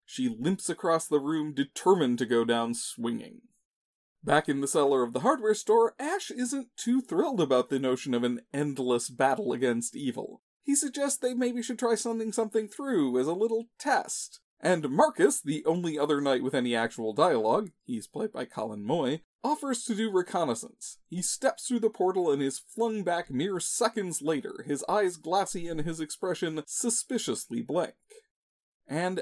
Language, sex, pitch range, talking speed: English, male, 140-225 Hz, 175 wpm